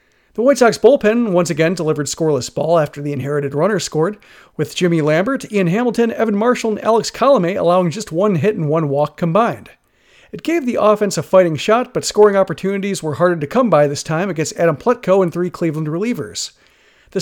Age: 40-59